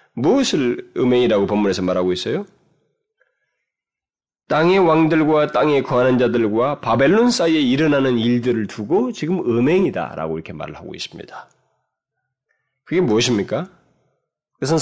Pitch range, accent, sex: 120-190 Hz, native, male